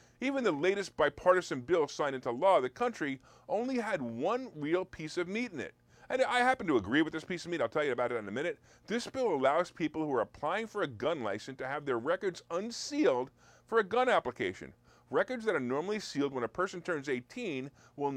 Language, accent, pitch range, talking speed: English, American, 150-245 Hz, 225 wpm